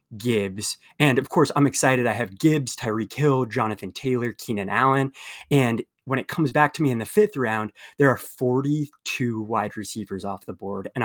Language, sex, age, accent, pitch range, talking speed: English, male, 20-39, American, 110-140 Hz, 190 wpm